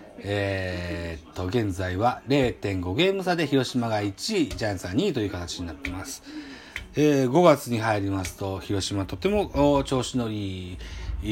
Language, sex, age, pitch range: Japanese, male, 40-59, 100-160 Hz